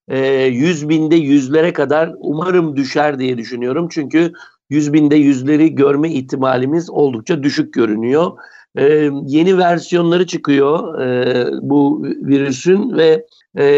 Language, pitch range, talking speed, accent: Turkish, 140-170 Hz, 115 wpm, native